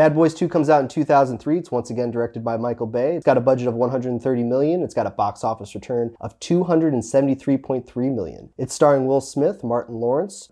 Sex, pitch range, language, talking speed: male, 110-145 Hz, English, 270 wpm